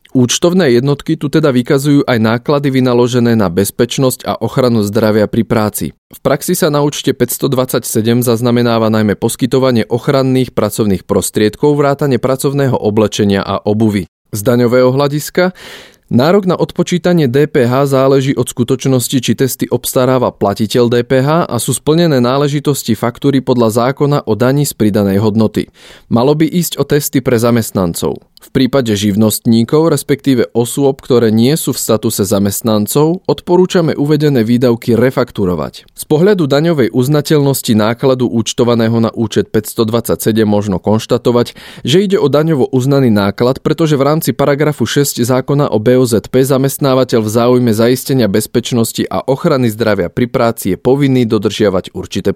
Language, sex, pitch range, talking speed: Slovak, male, 110-140 Hz, 140 wpm